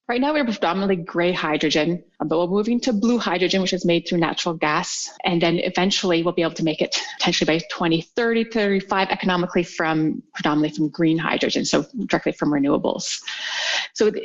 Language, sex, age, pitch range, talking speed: English, female, 30-49, 175-230 Hz, 175 wpm